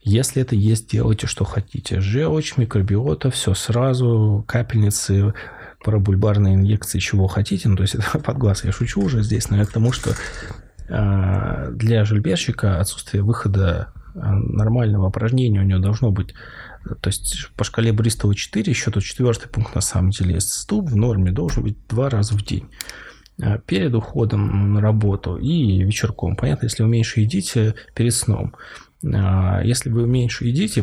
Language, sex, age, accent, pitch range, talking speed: Russian, male, 20-39, native, 100-120 Hz, 155 wpm